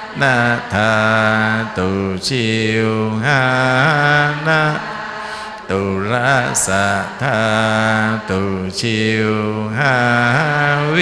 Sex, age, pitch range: male, 50-69, 110-120 Hz